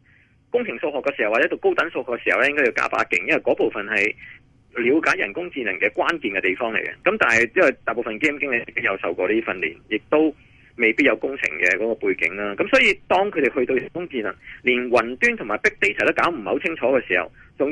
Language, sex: Chinese, male